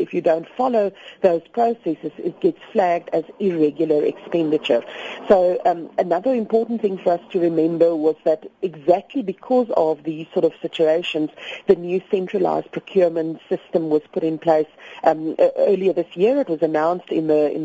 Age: 40-59